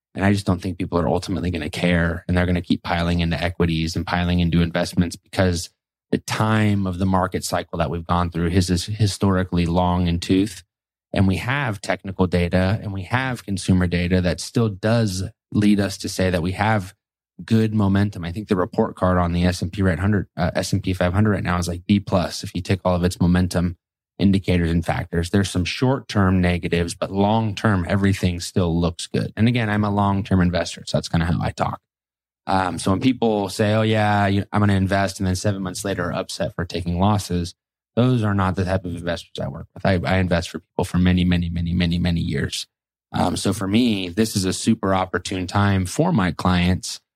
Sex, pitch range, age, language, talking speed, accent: male, 90-105 Hz, 20-39, English, 220 wpm, American